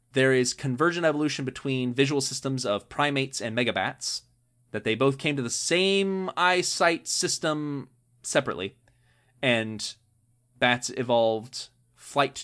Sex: male